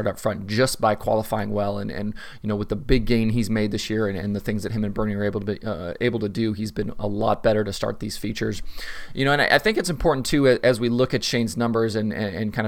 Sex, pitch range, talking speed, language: male, 105-120 Hz, 290 wpm, English